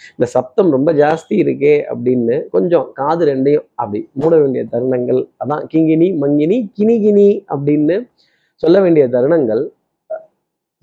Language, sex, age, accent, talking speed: Tamil, male, 30-49, native, 115 wpm